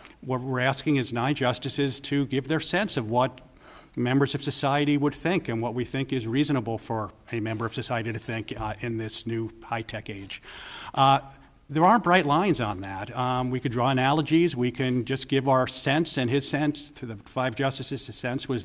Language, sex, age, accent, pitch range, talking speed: English, male, 50-69, American, 120-140 Hz, 205 wpm